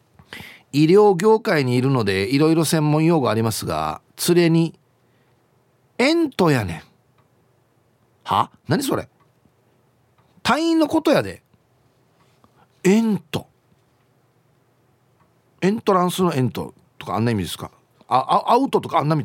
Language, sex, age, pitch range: Japanese, male, 40-59, 120-175 Hz